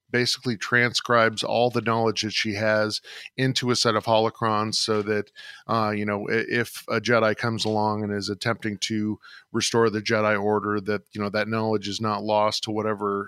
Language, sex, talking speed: English, male, 185 wpm